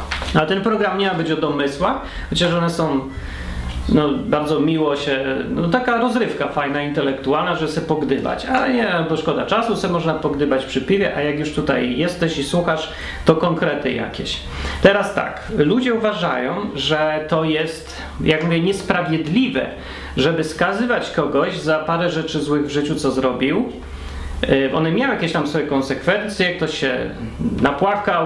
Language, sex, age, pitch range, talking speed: Polish, male, 30-49, 135-180 Hz, 155 wpm